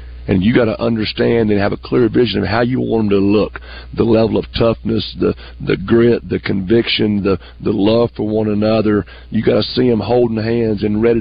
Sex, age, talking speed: male, 50-69, 220 wpm